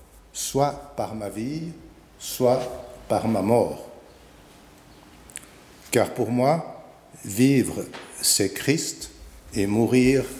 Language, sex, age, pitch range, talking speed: French, male, 60-79, 105-140 Hz, 90 wpm